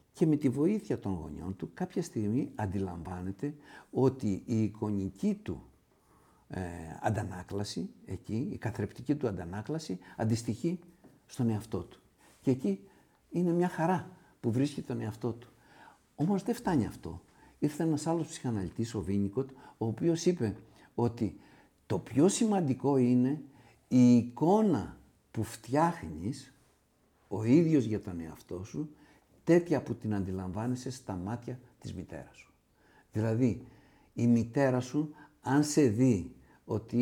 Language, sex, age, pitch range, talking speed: Greek, male, 60-79, 105-150 Hz, 130 wpm